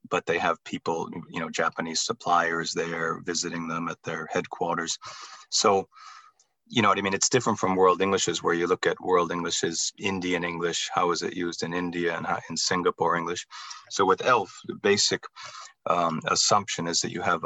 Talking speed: 185 wpm